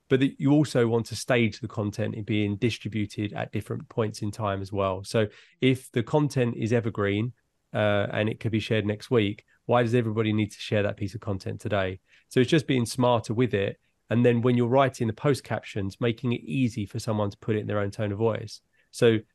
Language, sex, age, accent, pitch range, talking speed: English, male, 20-39, British, 105-120 Hz, 230 wpm